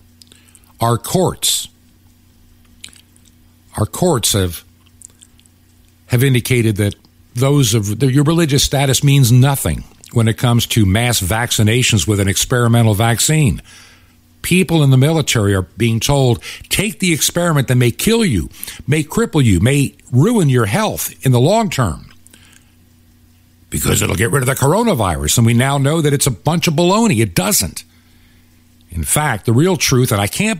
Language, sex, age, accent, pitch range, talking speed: English, male, 60-79, American, 85-140 Hz, 150 wpm